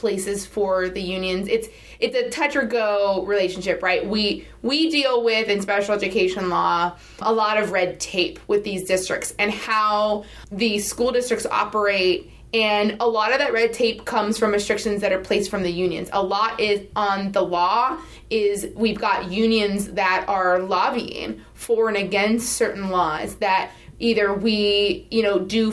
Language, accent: English, American